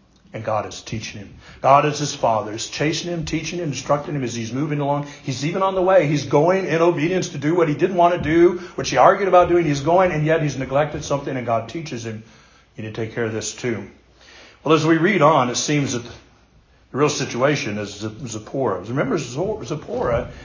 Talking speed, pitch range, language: 225 wpm, 115-155 Hz, English